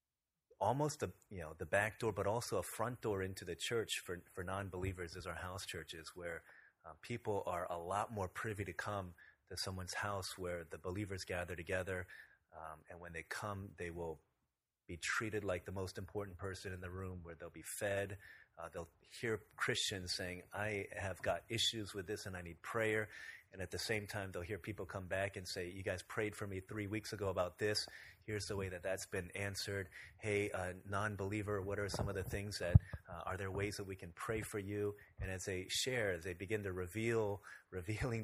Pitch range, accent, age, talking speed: 90-105 Hz, American, 30-49, 210 wpm